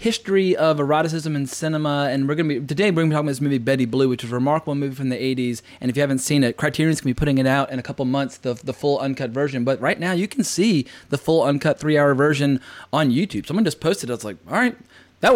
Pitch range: 135-165 Hz